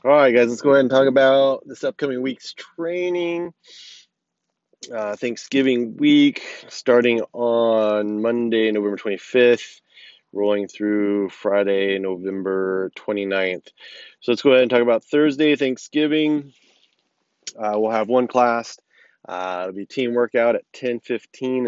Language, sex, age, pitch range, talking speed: English, male, 30-49, 105-130 Hz, 135 wpm